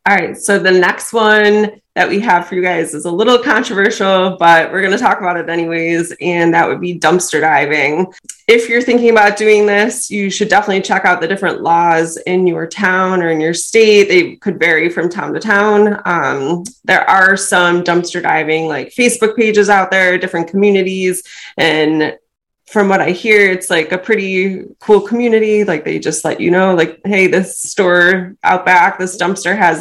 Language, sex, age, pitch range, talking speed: English, female, 20-39, 170-200 Hz, 195 wpm